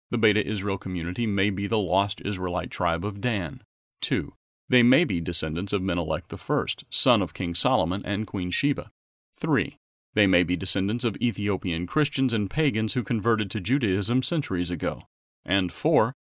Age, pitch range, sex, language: 40-59, 95-120 Hz, male, English